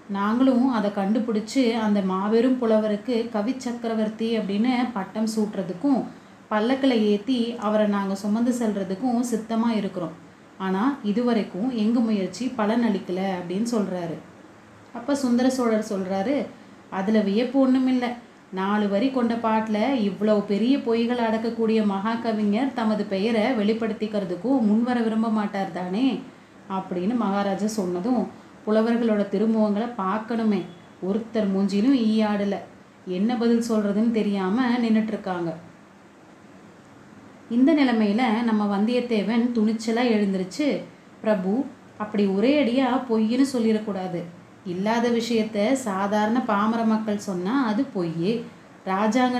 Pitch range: 205-235 Hz